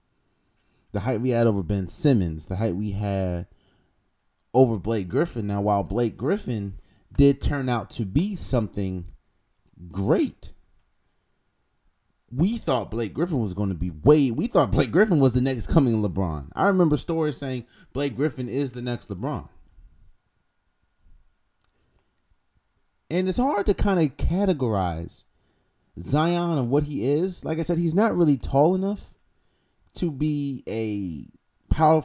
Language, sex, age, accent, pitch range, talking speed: English, male, 30-49, American, 95-140 Hz, 145 wpm